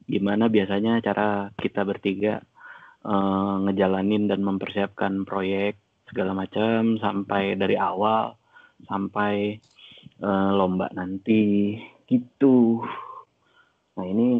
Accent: native